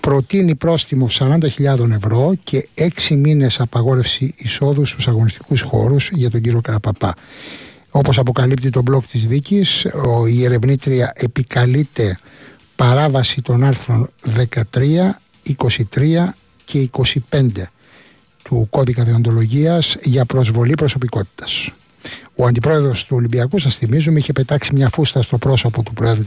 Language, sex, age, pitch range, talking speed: Greek, male, 60-79, 120-145 Hz, 120 wpm